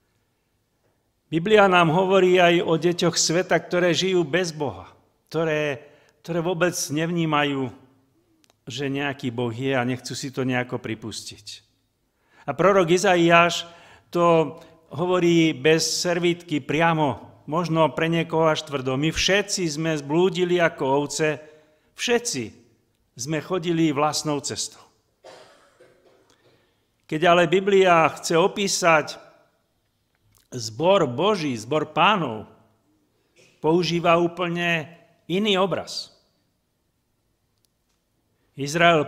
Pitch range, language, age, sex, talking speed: 135-175 Hz, Czech, 50-69, male, 95 wpm